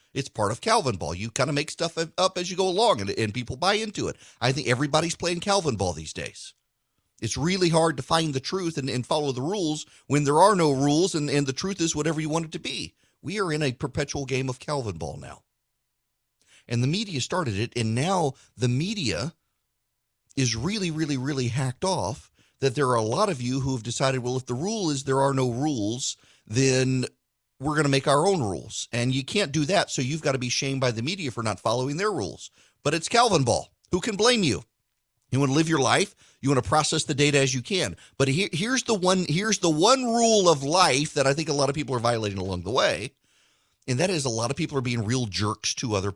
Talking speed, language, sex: 240 wpm, English, male